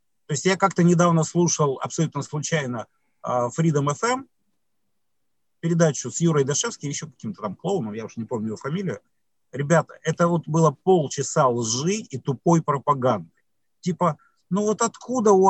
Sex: male